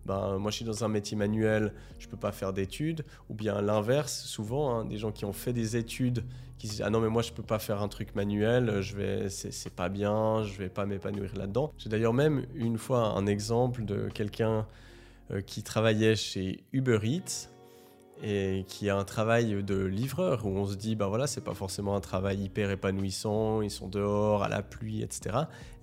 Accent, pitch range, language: French, 100-120 Hz, French